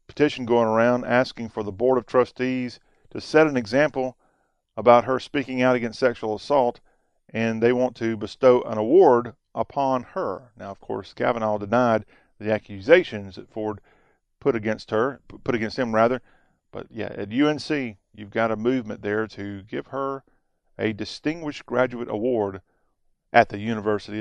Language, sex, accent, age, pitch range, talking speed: English, male, American, 40-59, 115-165 Hz, 160 wpm